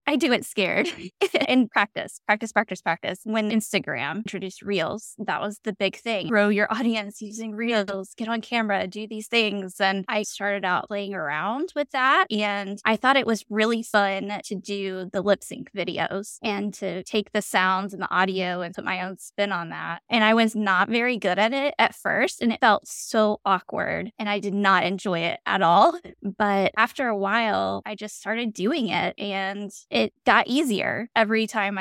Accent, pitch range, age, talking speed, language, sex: American, 195-220 Hz, 10-29, 195 wpm, English, female